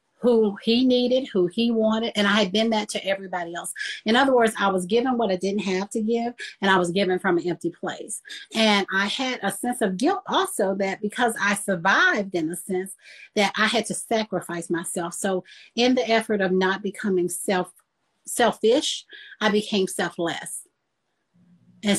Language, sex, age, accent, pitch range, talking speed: English, female, 40-59, American, 185-230 Hz, 185 wpm